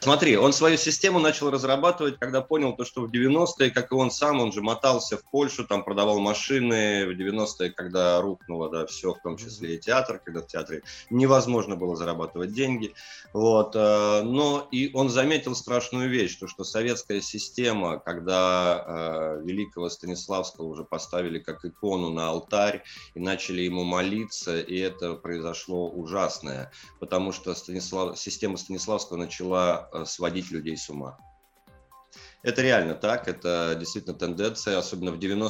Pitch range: 85-110 Hz